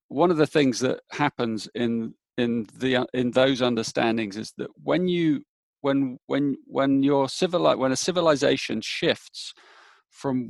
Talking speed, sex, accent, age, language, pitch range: 145 wpm, male, British, 40-59, English, 125-150 Hz